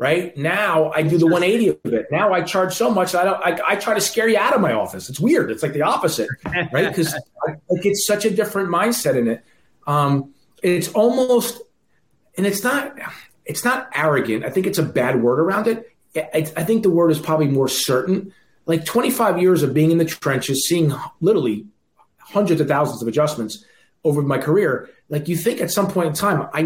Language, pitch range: English, 145-200 Hz